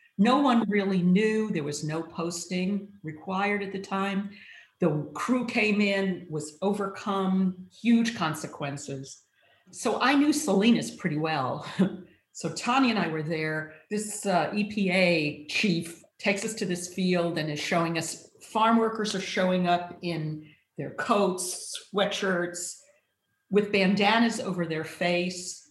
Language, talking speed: English, 140 wpm